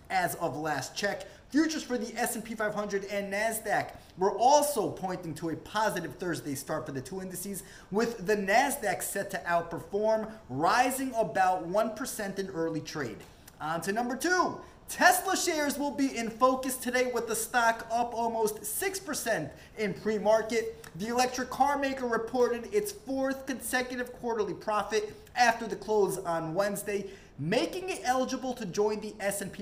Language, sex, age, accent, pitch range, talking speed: English, male, 20-39, American, 190-240 Hz, 155 wpm